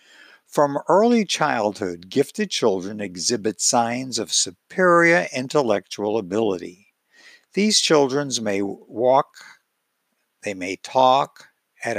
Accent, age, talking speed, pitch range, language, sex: American, 60-79, 95 wpm, 105-175 Hz, English, male